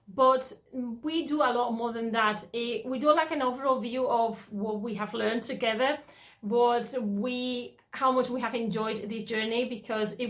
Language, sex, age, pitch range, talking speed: English, female, 30-49, 210-250 Hz, 180 wpm